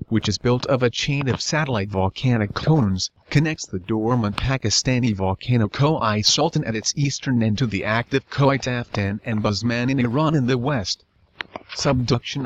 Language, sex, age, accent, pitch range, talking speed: English, male, 40-59, American, 115-140 Hz, 165 wpm